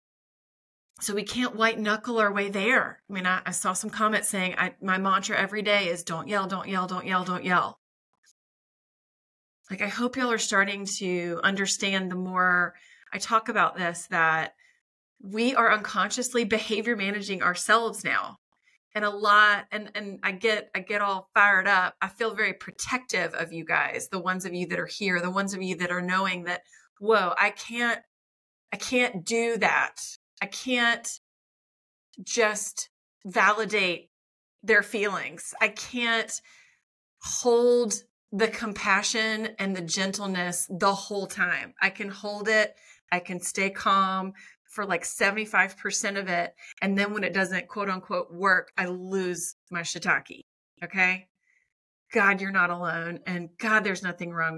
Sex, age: female, 30-49